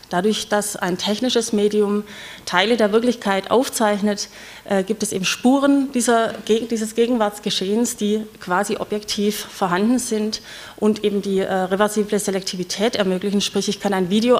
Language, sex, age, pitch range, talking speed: German, female, 30-49, 195-225 Hz, 135 wpm